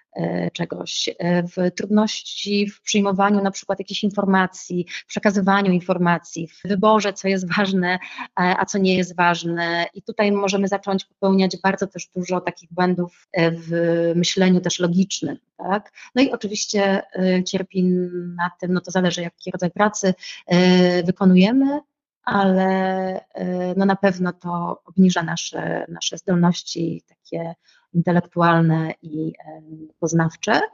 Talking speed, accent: 125 wpm, native